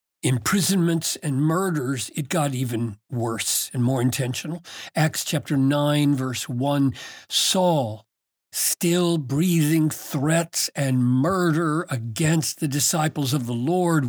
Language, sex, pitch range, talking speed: English, male, 125-160 Hz, 115 wpm